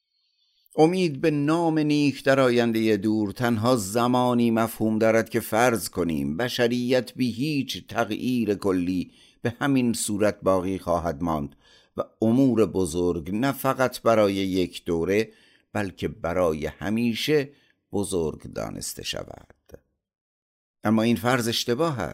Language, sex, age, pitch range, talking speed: Persian, male, 50-69, 85-120 Hz, 115 wpm